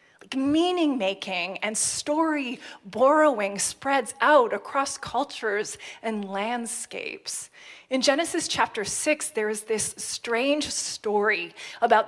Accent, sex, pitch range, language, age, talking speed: American, female, 205-280 Hz, English, 30-49, 95 wpm